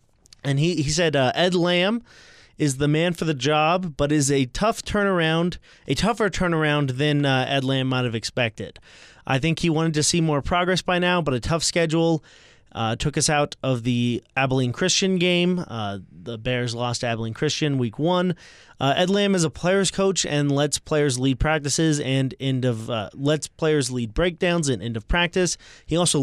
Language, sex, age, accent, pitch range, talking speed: English, male, 20-39, American, 120-165 Hz, 195 wpm